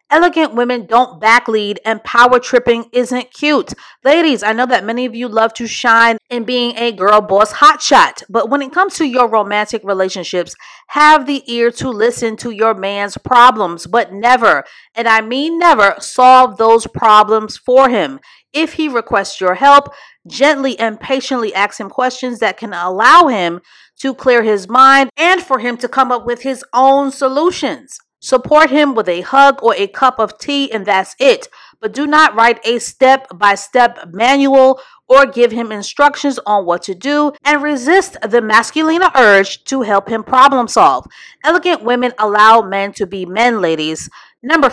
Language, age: English, 40-59